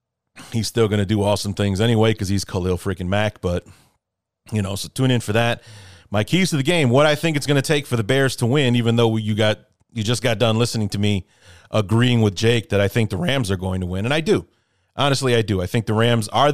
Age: 30-49